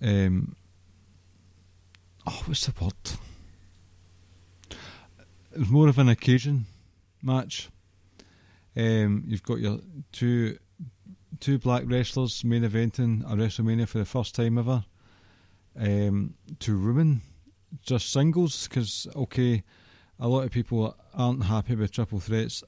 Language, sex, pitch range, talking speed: English, male, 95-120 Hz, 120 wpm